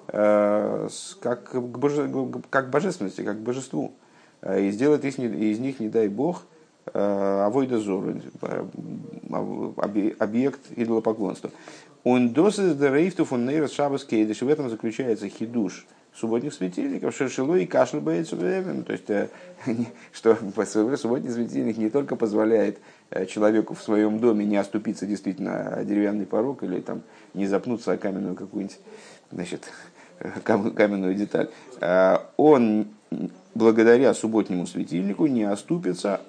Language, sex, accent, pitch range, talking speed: Russian, male, native, 105-130 Hz, 110 wpm